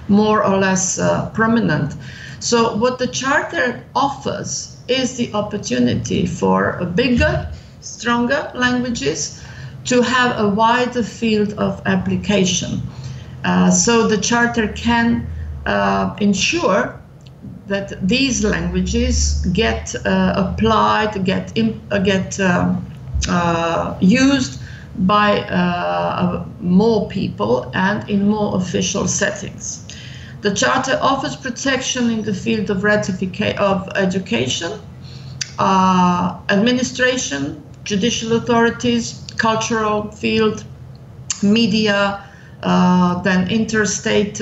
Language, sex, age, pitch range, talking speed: Russian, female, 50-69, 180-225 Hz, 95 wpm